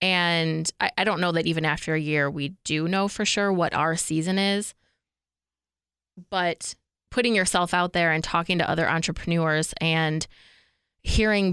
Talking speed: 160 wpm